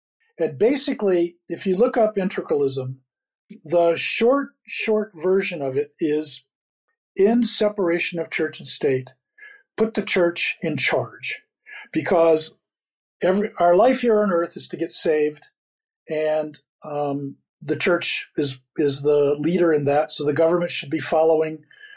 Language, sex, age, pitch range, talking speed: English, male, 50-69, 160-225 Hz, 140 wpm